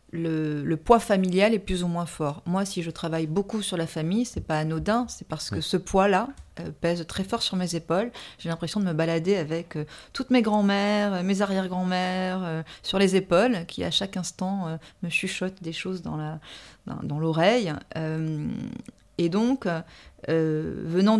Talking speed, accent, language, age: 195 wpm, French, French, 30-49